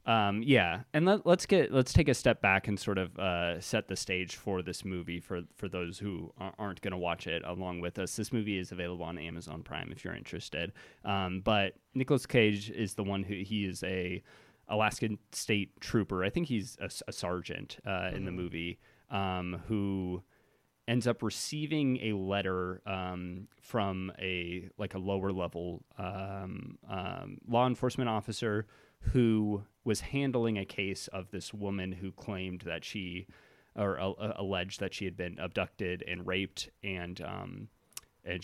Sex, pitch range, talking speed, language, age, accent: male, 90-110 Hz, 170 wpm, English, 20-39, American